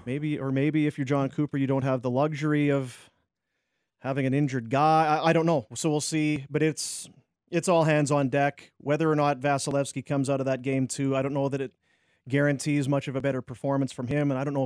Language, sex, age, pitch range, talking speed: English, male, 30-49, 135-155 Hz, 240 wpm